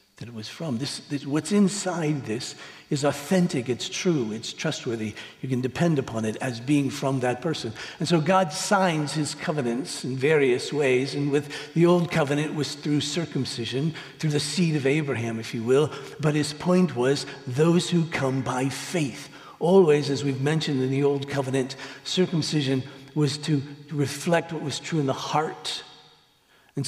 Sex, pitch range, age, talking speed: male, 135-170 Hz, 60-79, 175 wpm